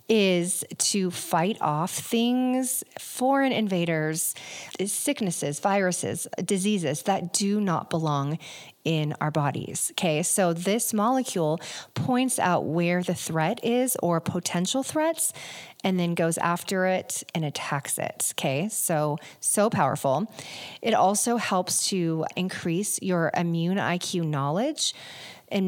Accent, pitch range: American, 160-205 Hz